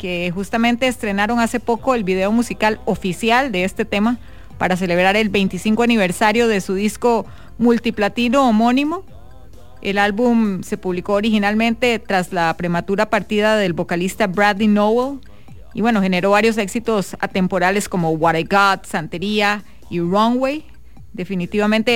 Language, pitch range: English, 195-235 Hz